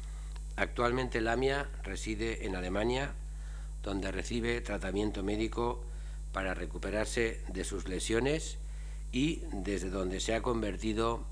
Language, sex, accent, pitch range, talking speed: Spanish, male, Spanish, 75-110 Hz, 110 wpm